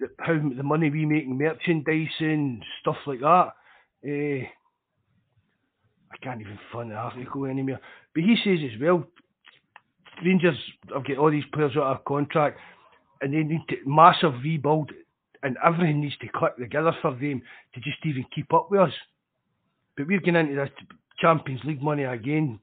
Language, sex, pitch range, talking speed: English, male, 135-160 Hz, 165 wpm